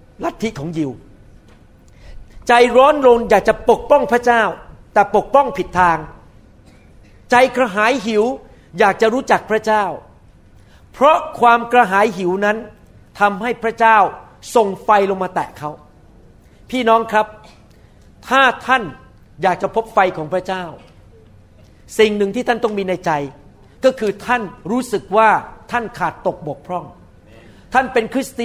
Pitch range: 180-245 Hz